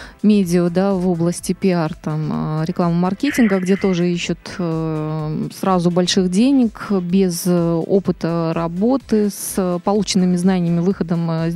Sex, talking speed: female, 105 wpm